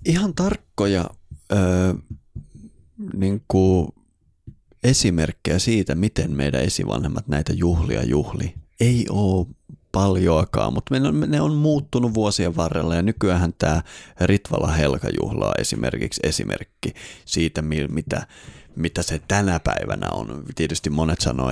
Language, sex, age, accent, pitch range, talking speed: Finnish, male, 30-49, native, 85-105 Hz, 115 wpm